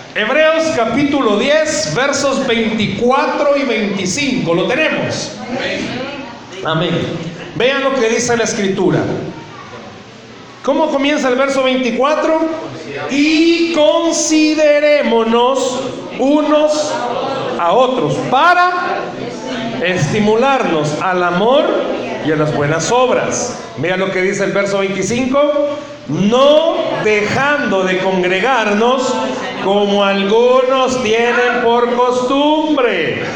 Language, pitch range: Spanish, 195-290 Hz